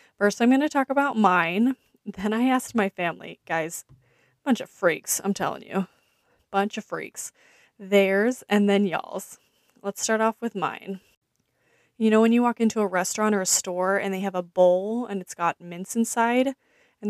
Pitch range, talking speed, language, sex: 180-230 Hz, 185 wpm, English, female